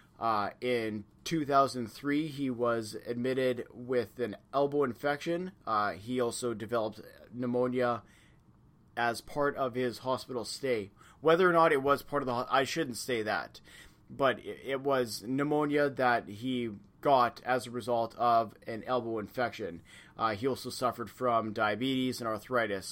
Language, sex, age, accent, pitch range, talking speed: English, male, 30-49, American, 115-135 Hz, 145 wpm